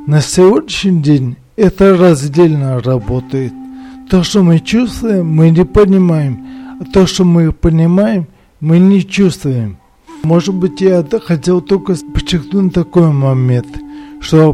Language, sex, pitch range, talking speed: Russian, male, 145-195 Hz, 125 wpm